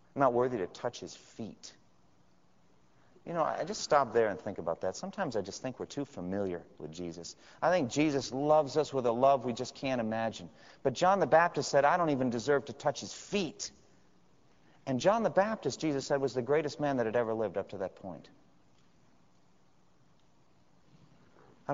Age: 40-59